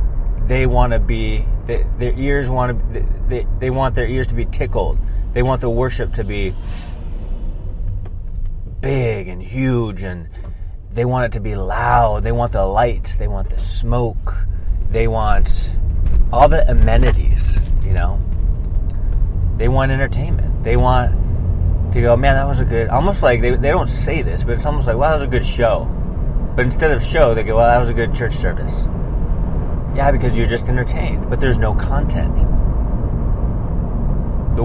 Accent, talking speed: American, 170 wpm